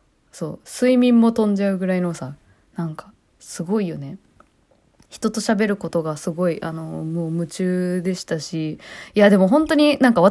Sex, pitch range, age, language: female, 175-260 Hz, 20-39, Japanese